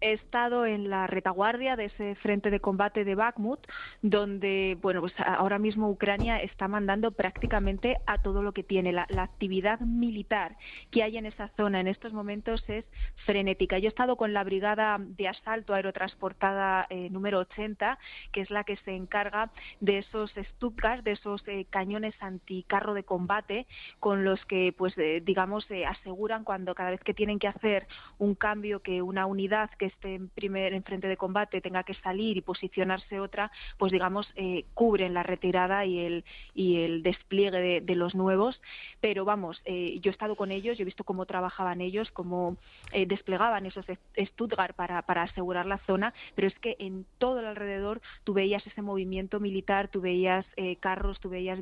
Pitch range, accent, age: 190-210 Hz, Spanish, 20-39